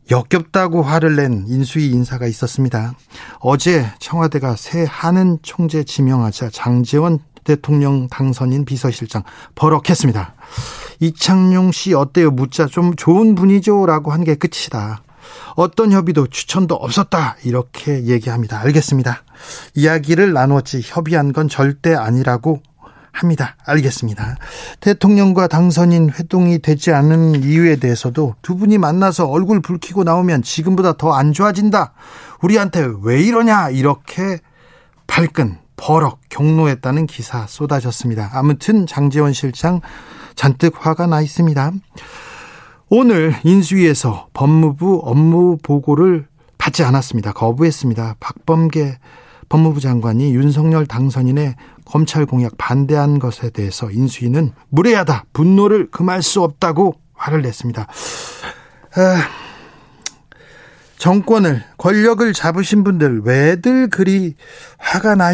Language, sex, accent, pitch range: Korean, male, native, 130-175 Hz